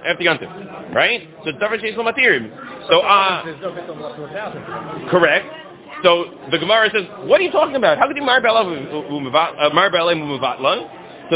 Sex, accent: male, American